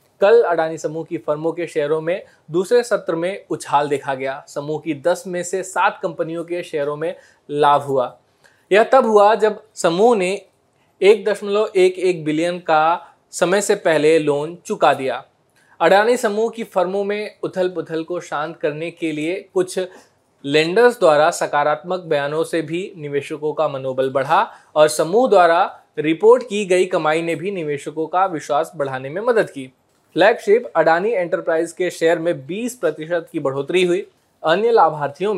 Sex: male